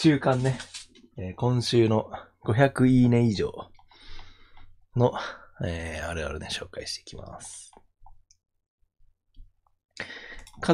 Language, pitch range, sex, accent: Japanese, 90-120 Hz, male, native